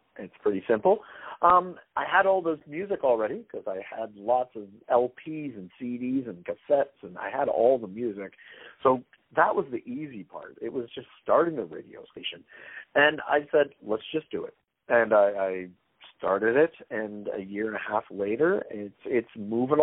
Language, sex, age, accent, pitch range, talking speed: English, male, 50-69, American, 105-145 Hz, 185 wpm